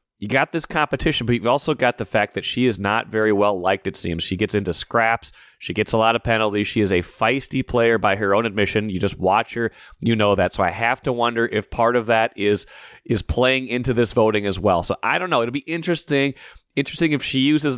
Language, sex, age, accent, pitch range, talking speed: English, male, 30-49, American, 105-125 Hz, 245 wpm